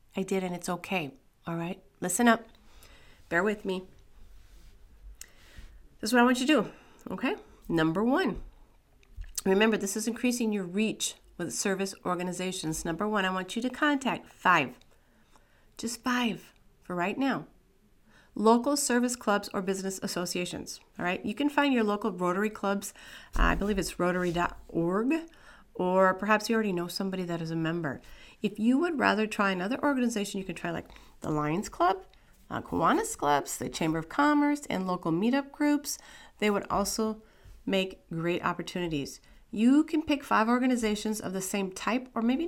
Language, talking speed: English, 165 wpm